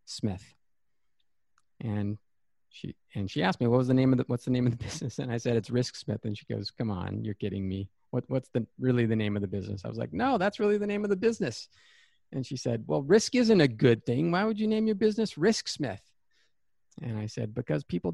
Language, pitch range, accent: English, 115-145 Hz, American